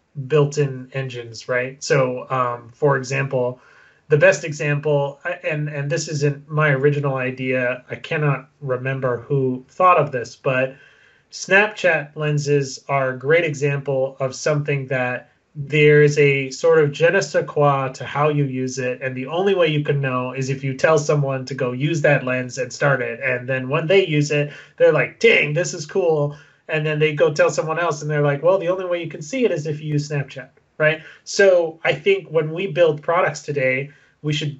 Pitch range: 135-160 Hz